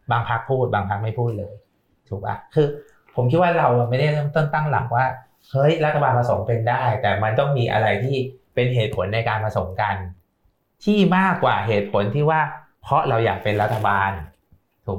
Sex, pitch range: male, 105-130 Hz